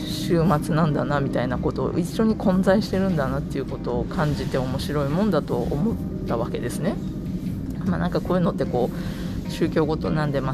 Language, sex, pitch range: Japanese, female, 145-185 Hz